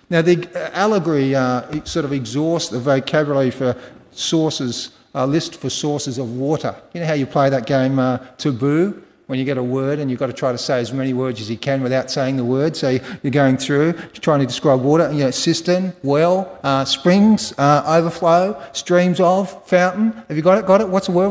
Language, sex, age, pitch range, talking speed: English, male, 40-59, 130-170 Hz, 215 wpm